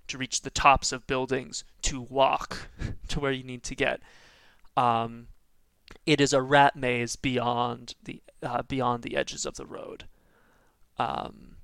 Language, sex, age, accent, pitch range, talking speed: English, male, 20-39, American, 125-145 Hz, 155 wpm